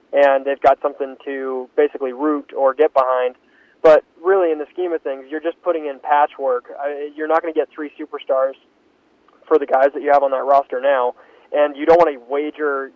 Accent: American